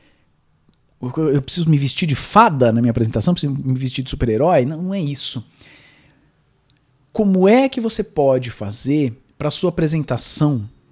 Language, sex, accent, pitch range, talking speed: Portuguese, male, Brazilian, 125-165 Hz, 155 wpm